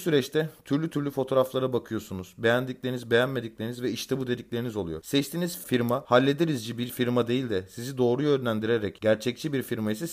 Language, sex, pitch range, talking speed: Turkish, male, 115-140 Hz, 150 wpm